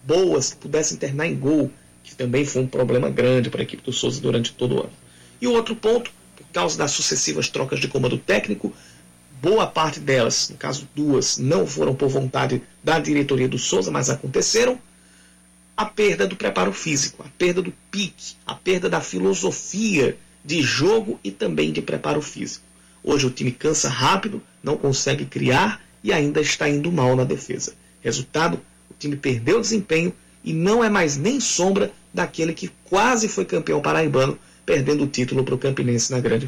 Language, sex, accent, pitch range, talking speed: Portuguese, male, Brazilian, 95-160 Hz, 180 wpm